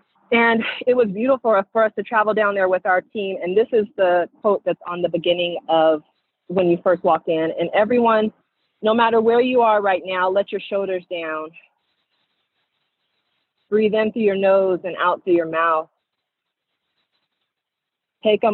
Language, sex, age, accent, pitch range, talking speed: English, female, 30-49, American, 170-200 Hz, 175 wpm